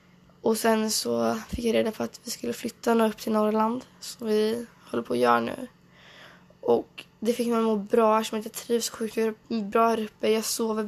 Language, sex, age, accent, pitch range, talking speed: Swedish, female, 10-29, native, 195-230 Hz, 220 wpm